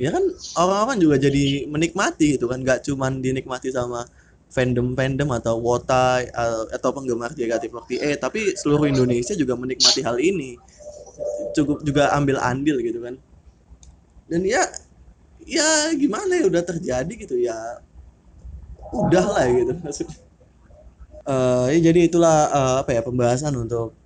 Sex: male